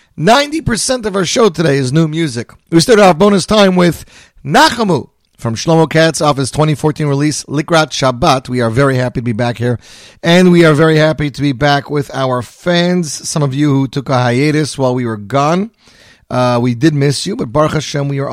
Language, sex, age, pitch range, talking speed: English, male, 40-59, 120-170 Hz, 205 wpm